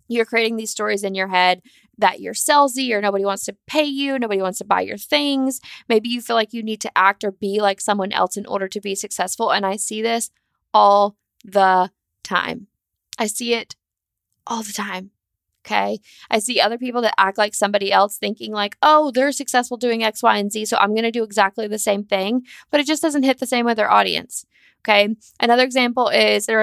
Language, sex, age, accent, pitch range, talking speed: English, female, 20-39, American, 200-240 Hz, 220 wpm